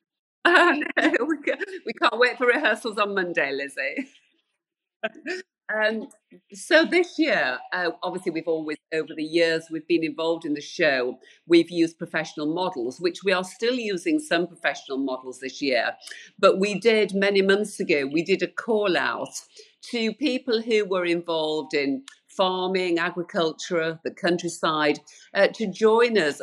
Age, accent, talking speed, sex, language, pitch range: 50-69, British, 145 wpm, female, English, 165-230 Hz